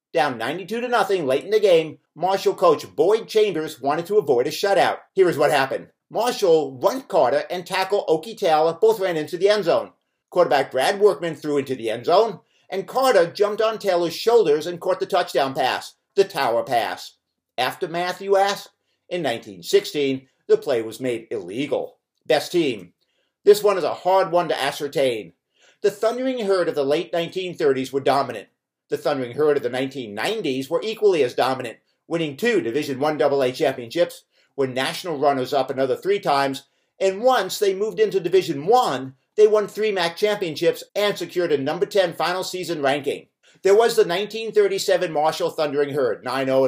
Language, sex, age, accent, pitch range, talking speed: English, male, 50-69, American, 145-230 Hz, 175 wpm